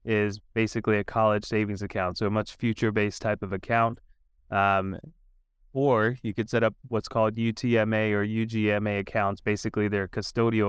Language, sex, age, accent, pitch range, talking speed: English, male, 20-39, American, 105-120 Hz, 155 wpm